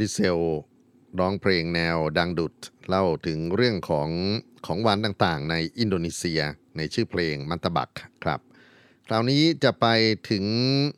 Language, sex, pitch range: Thai, male, 90-115 Hz